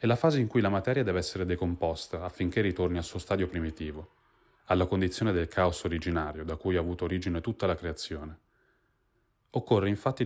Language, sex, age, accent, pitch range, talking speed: Italian, male, 30-49, native, 90-115 Hz, 180 wpm